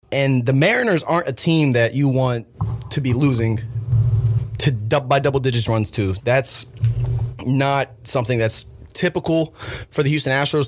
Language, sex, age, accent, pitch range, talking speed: English, male, 20-39, American, 115-140 Hz, 150 wpm